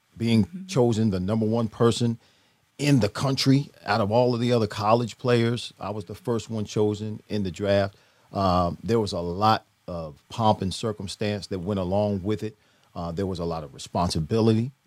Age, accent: 40-59, American